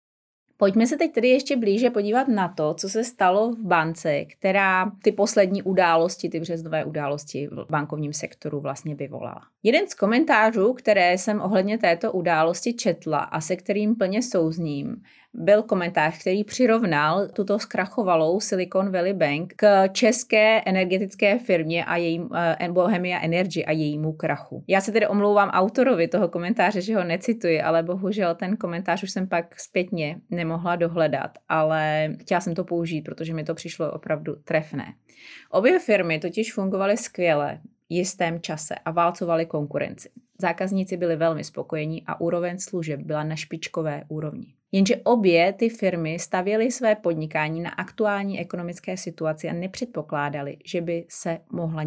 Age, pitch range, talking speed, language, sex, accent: 20-39, 160-205 Hz, 150 wpm, Czech, female, native